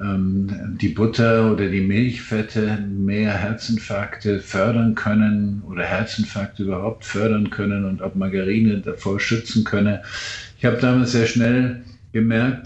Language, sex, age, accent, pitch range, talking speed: German, male, 50-69, German, 100-115 Hz, 125 wpm